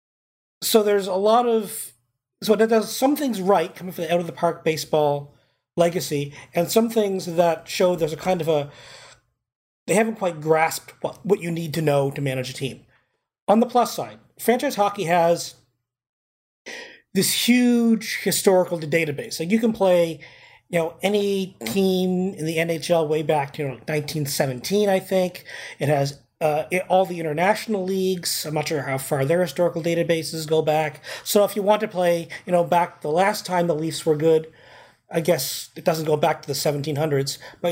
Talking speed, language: 180 wpm, English